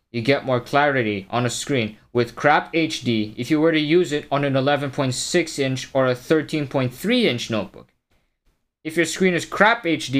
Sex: male